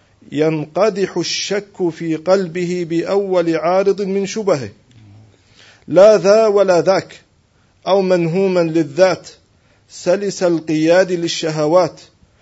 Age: 40-59